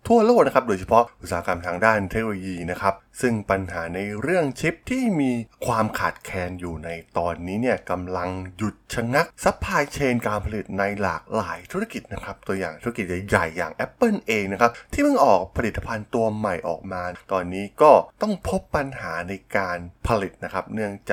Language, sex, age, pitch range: Thai, male, 20-39, 95-135 Hz